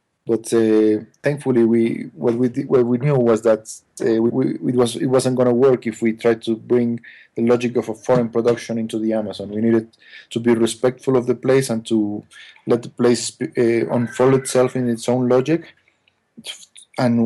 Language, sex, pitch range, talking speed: English, male, 115-125 Hz, 195 wpm